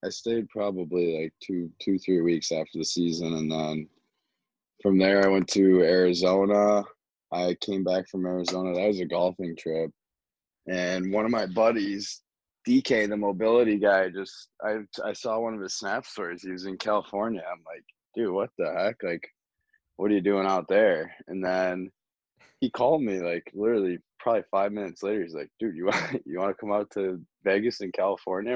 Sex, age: male, 20-39